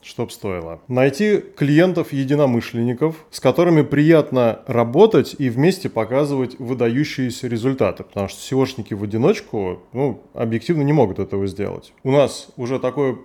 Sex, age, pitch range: male, 20-39, 115-145 Hz